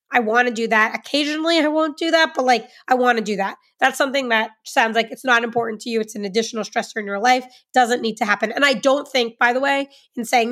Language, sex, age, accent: English, female, 20-39, American